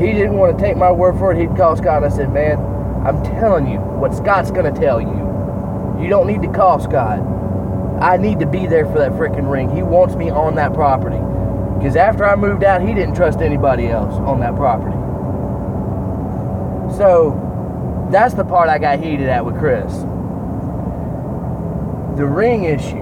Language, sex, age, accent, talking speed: English, male, 20-39, American, 190 wpm